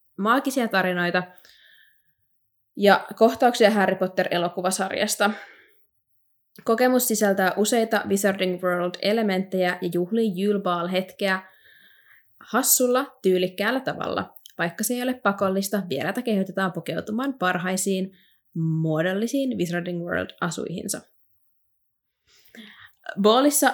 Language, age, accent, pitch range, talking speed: Finnish, 20-39, native, 175-220 Hz, 80 wpm